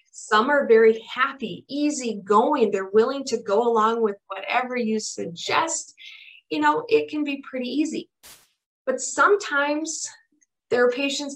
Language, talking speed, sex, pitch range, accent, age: English, 145 wpm, female, 210-290 Hz, American, 20-39